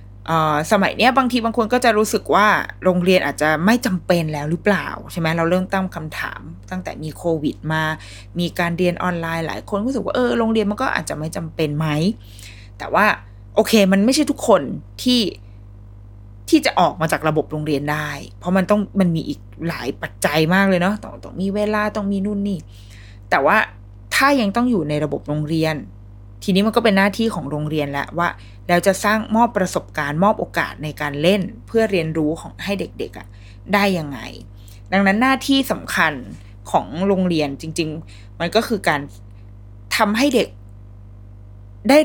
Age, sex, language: 20-39, female, Thai